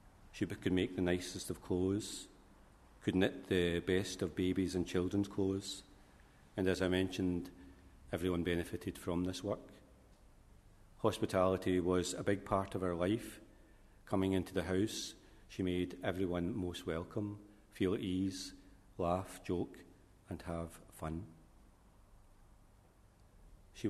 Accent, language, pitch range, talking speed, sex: British, English, 85-100 Hz, 130 wpm, male